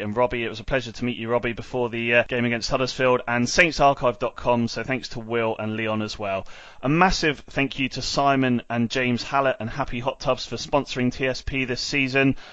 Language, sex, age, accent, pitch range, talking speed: English, male, 30-49, British, 110-135 Hz, 210 wpm